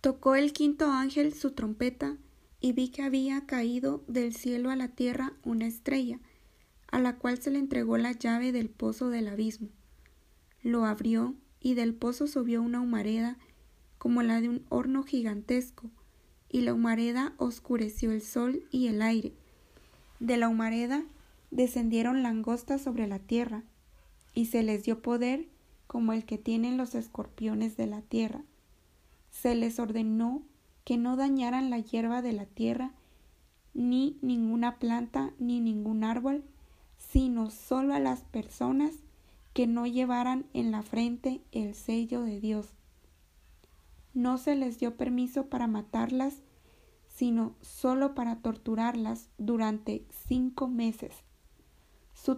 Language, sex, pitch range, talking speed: Spanish, female, 225-260 Hz, 140 wpm